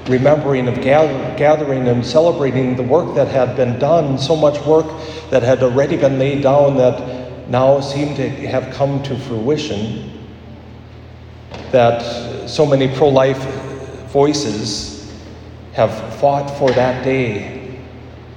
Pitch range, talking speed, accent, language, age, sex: 110-135 Hz, 125 wpm, American, English, 50-69, male